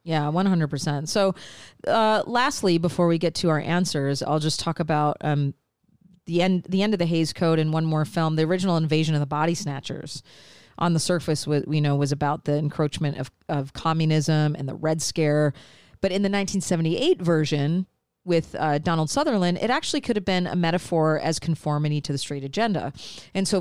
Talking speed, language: 195 wpm, English